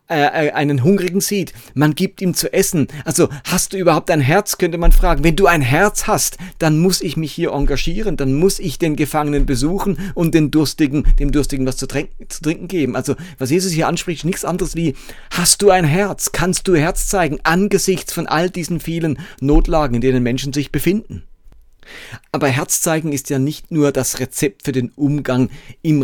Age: 40-59